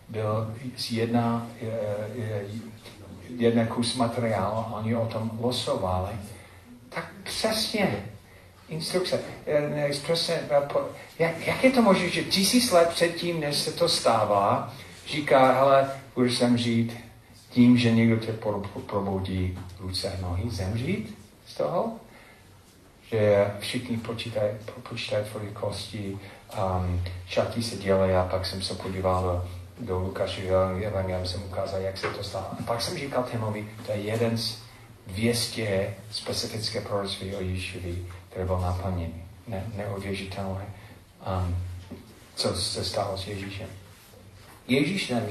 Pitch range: 95-120 Hz